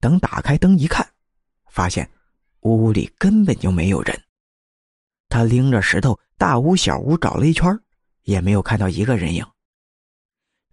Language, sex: Chinese, male